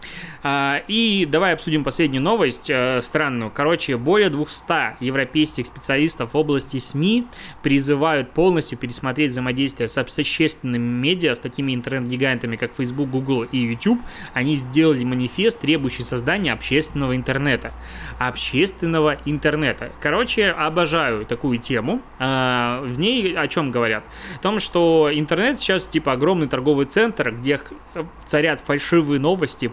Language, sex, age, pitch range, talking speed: Russian, male, 20-39, 130-160 Hz, 120 wpm